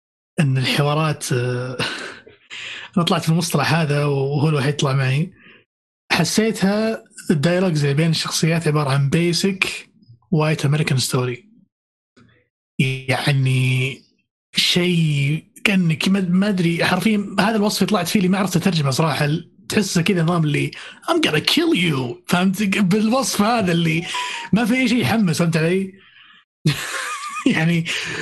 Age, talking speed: 30-49, 115 wpm